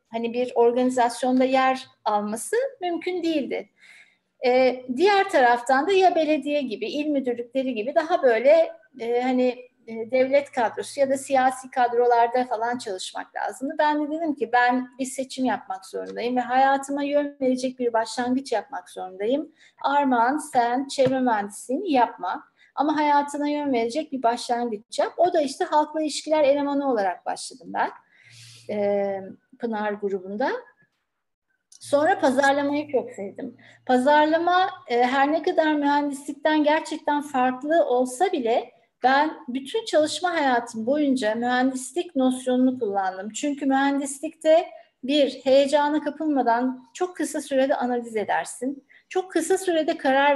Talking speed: 125 wpm